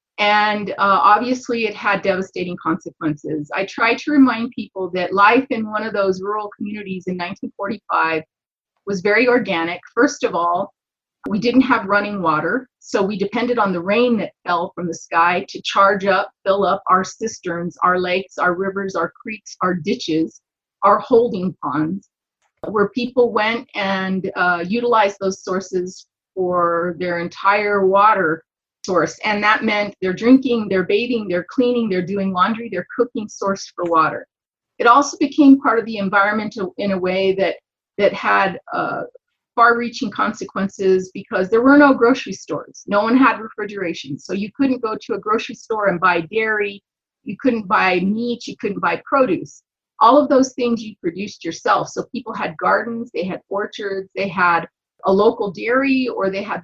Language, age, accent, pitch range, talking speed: English, 30-49, American, 185-230 Hz, 170 wpm